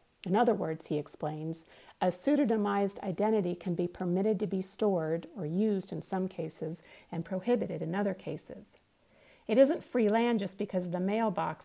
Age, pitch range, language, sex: 40-59, 175-205 Hz, English, female